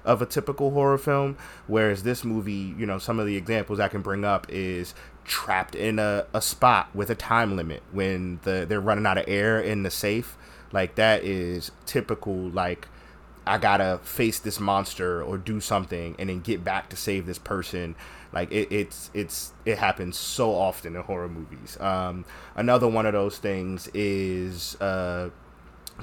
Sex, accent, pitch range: male, American, 90-105 Hz